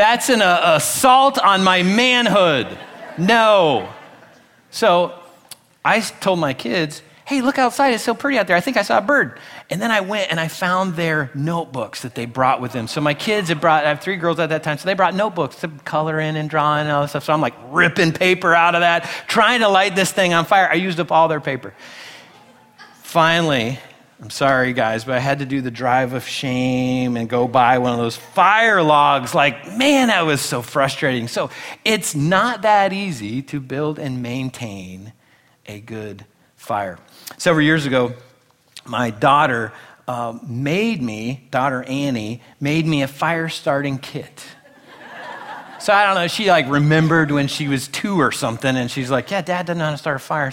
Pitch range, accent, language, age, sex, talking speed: 125-170 Hz, American, English, 30-49, male, 200 wpm